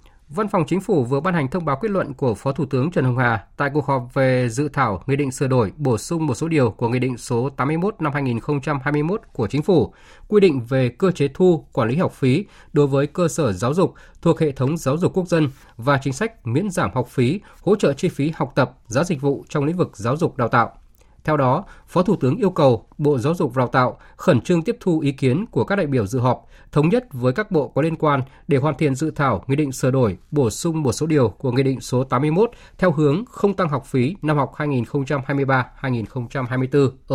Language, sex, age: Vietnamese, male, 20-39